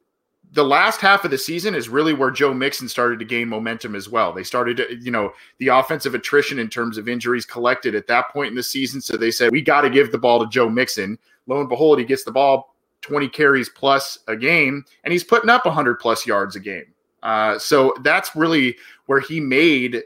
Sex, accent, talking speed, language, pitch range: male, American, 225 wpm, English, 115-145 Hz